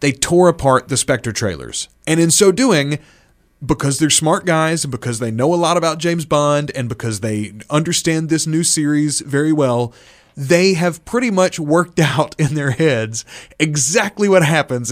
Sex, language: male, English